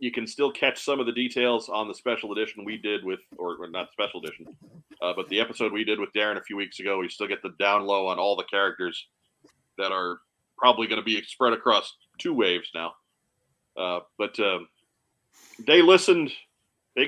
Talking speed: 205 wpm